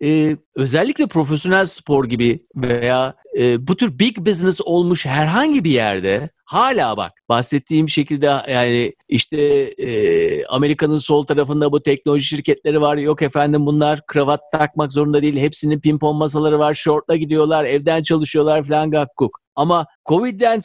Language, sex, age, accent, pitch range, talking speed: Turkish, male, 50-69, native, 145-205 Hz, 140 wpm